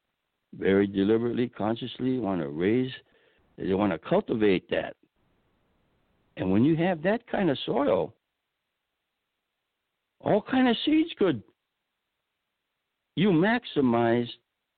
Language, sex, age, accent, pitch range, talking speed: English, male, 60-79, American, 90-120 Hz, 105 wpm